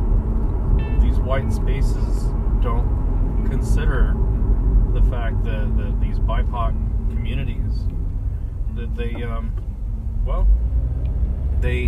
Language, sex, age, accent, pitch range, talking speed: English, male, 40-59, American, 90-110 Hz, 80 wpm